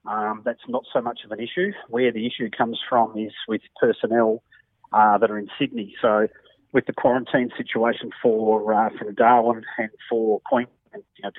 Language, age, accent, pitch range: English, 40-59, Australian, 105-115 Hz